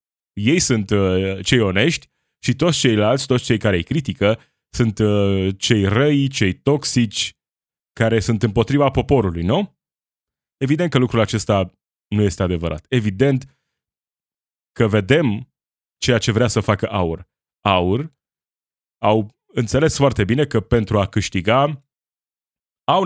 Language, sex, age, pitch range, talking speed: Romanian, male, 20-39, 100-135 Hz, 125 wpm